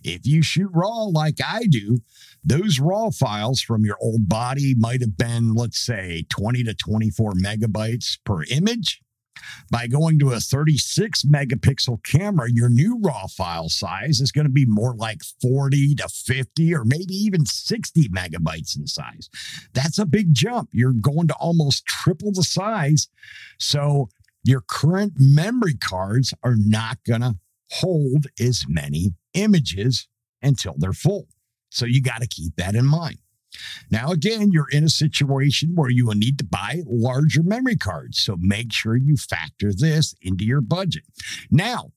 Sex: male